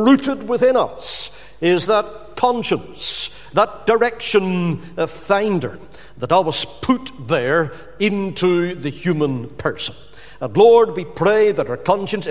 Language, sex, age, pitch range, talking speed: English, male, 50-69, 150-215 Hz, 115 wpm